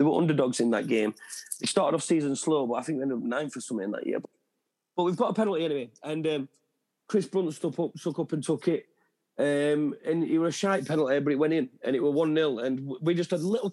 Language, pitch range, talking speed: English, 140-180 Hz, 260 wpm